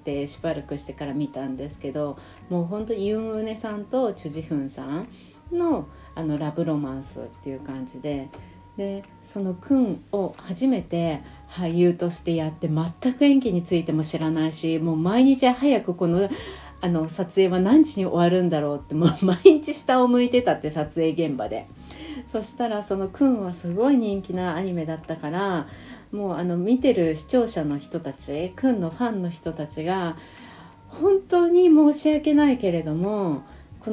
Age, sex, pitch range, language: 40-59, female, 155-235 Hz, Japanese